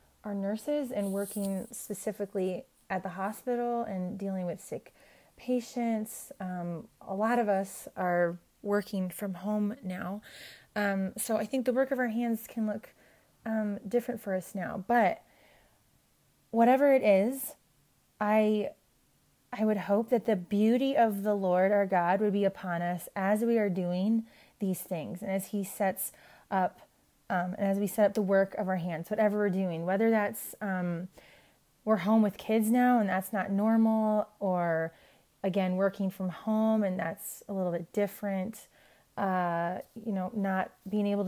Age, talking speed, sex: 30-49, 165 wpm, female